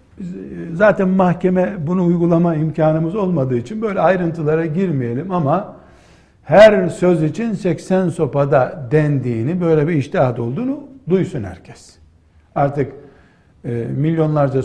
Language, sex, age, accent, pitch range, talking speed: Turkish, male, 60-79, native, 120-180 Hz, 100 wpm